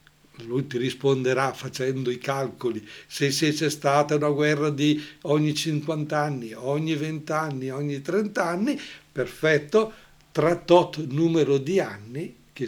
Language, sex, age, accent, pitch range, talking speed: Italian, male, 60-79, native, 135-165 Hz, 135 wpm